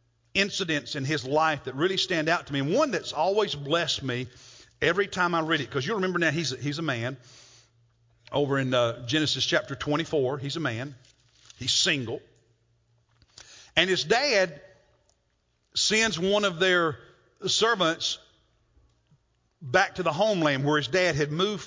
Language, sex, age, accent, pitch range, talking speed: English, male, 50-69, American, 120-175 Hz, 160 wpm